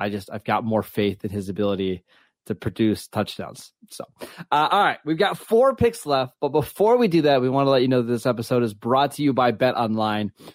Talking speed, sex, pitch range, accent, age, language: 235 wpm, male, 115-150 Hz, American, 30-49, English